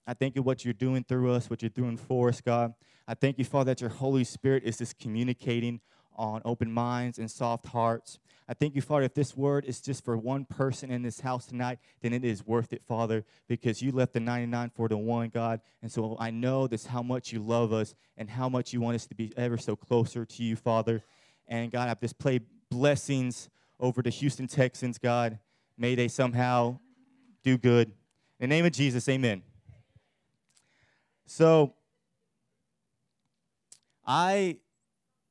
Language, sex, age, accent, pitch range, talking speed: English, male, 20-39, American, 115-135 Hz, 185 wpm